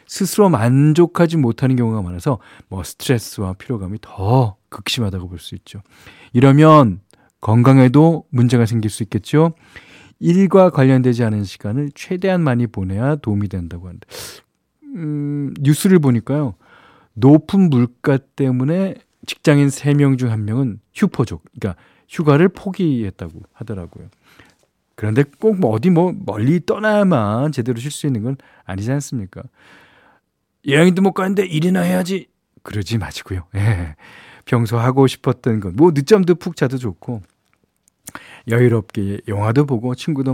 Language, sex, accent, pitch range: Korean, male, native, 105-150 Hz